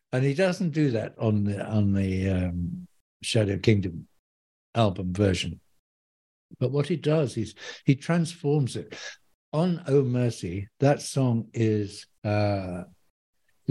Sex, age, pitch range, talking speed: male, 60-79, 95-125 Hz, 125 wpm